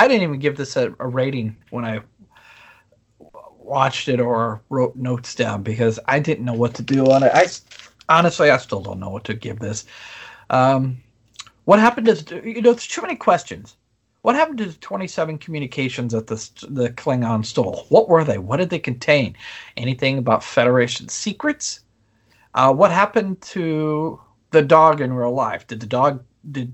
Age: 40-59